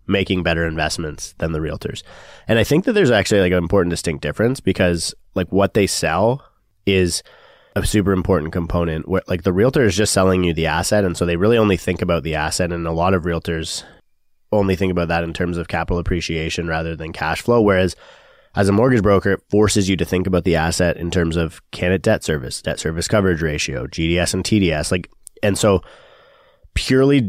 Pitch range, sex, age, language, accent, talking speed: 85-100 Hz, male, 20-39, English, American, 205 wpm